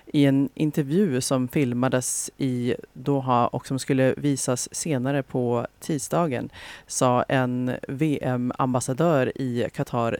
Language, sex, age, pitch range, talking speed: Swedish, female, 30-49, 125-140 Hz, 110 wpm